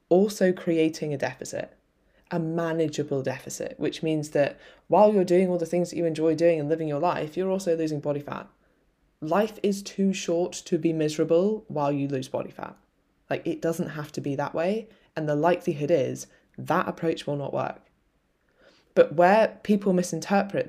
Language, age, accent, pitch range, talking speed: English, 20-39, British, 145-180 Hz, 180 wpm